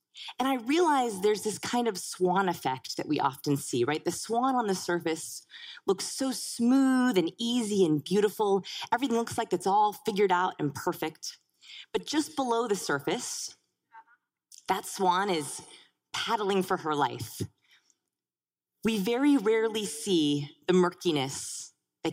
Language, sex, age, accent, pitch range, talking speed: English, female, 30-49, American, 175-240 Hz, 145 wpm